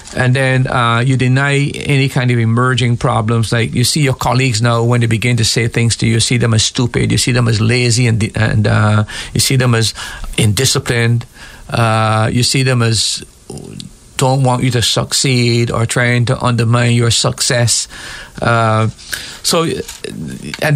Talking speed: 175 wpm